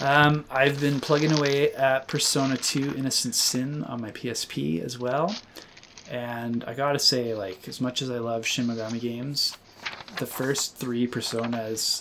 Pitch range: 115-130 Hz